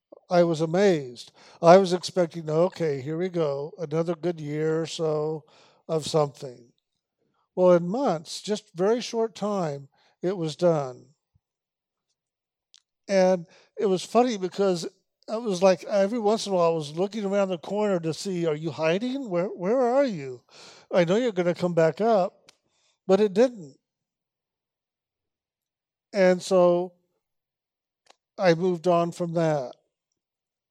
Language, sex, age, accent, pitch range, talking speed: English, male, 50-69, American, 160-195 Hz, 145 wpm